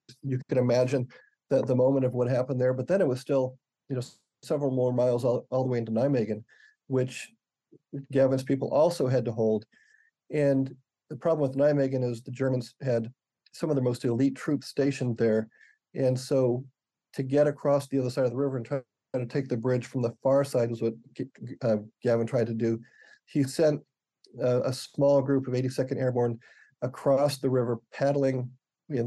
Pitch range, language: 125-140 Hz, English